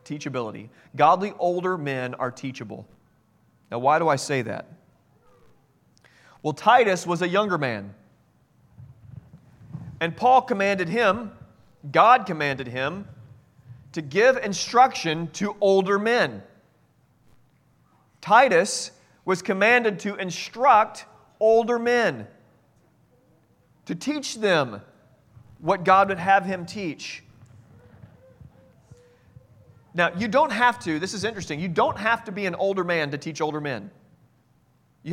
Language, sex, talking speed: English, male, 115 wpm